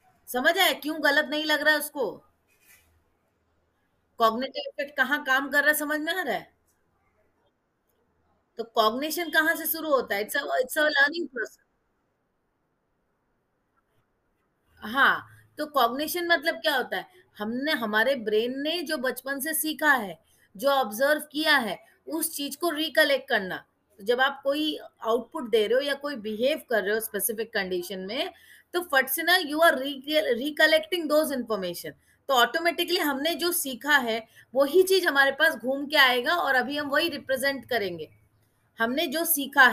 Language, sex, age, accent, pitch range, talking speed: English, female, 30-49, Indian, 230-315 Hz, 155 wpm